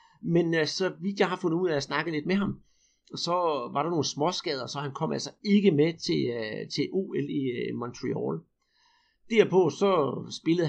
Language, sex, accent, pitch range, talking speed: Danish, male, native, 140-180 Hz, 180 wpm